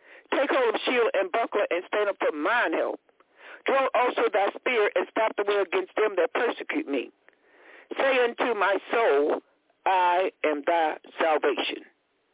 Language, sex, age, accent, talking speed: English, male, 60-79, American, 160 wpm